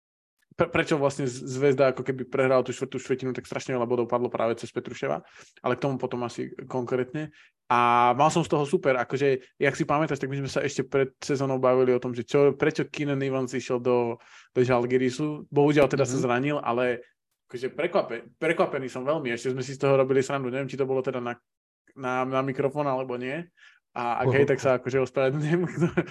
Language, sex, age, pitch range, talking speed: Slovak, male, 20-39, 125-140 Hz, 200 wpm